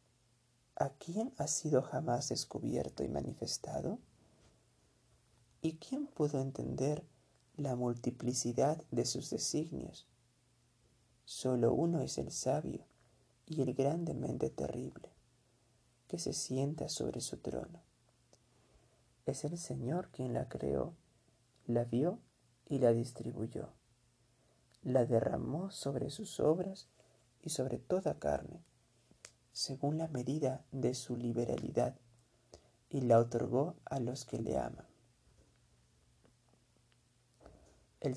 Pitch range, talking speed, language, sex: 120-145 Hz, 105 wpm, Spanish, male